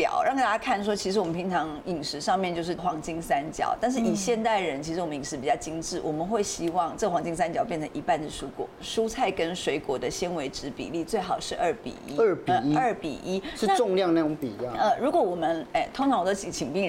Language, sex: Chinese, female